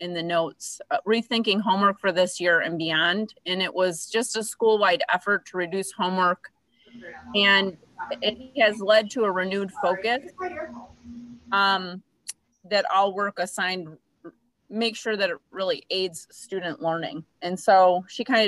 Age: 30-49